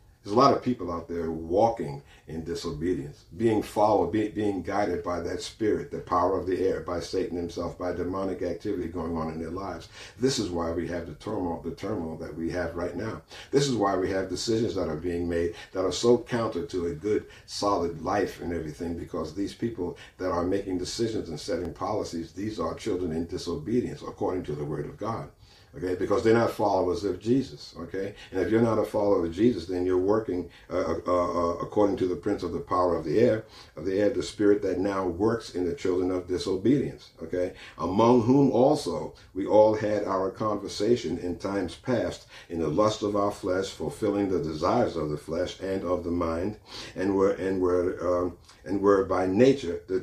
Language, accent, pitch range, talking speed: English, American, 85-105 Hz, 205 wpm